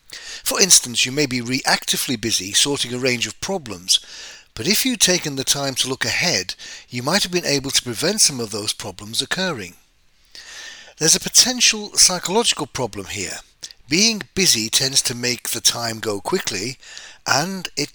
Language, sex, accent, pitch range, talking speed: English, male, British, 110-180 Hz, 170 wpm